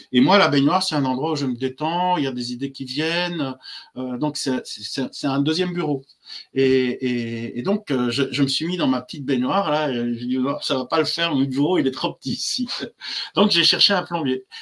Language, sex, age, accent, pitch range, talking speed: French, male, 50-69, French, 130-185 Hz, 240 wpm